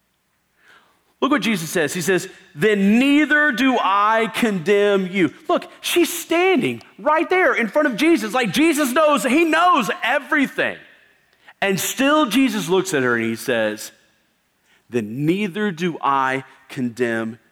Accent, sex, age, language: American, male, 40-59, English